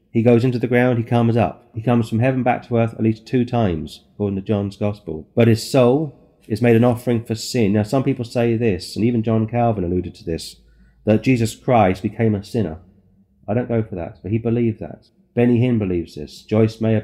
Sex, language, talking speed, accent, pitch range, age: male, English, 230 wpm, British, 105-125 Hz, 30-49